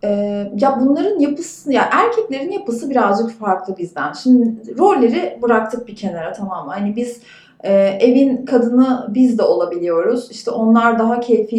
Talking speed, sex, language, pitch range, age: 140 wpm, female, Turkish, 210-315 Hz, 30-49